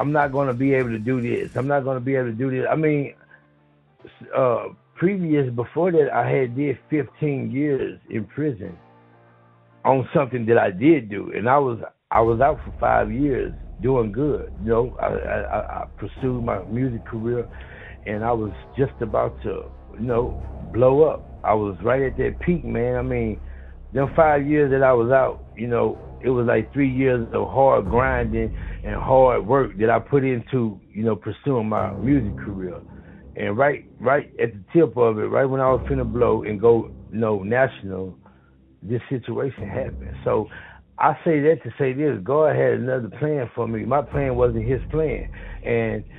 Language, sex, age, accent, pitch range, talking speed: English, male, 60-79, American, 110-135 Hz, 190 wpm